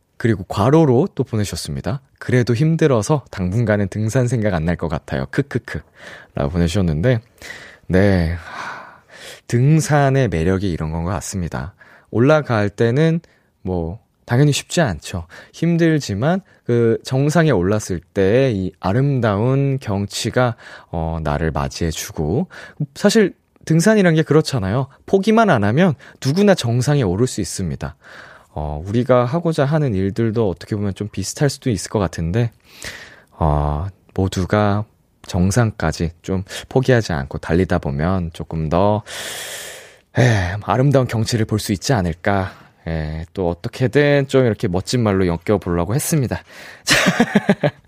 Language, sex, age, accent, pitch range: Korean, male, 20-39, native, 90-140 Hz